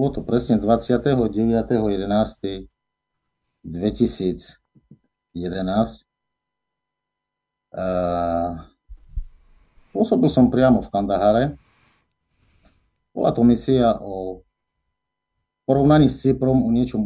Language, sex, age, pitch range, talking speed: Slovak, male, 50-69, 100-130 Hz, 65 wpm